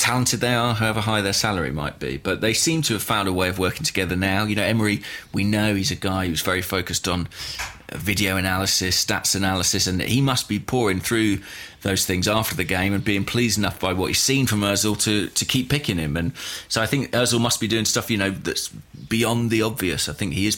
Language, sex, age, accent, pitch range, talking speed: English, male, 30-49, British, 95-115 Hz, 240 wpm